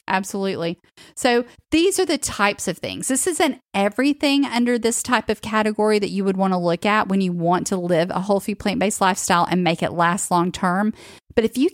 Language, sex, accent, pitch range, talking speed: English, female, American, 190-230 Hz, 215 wpm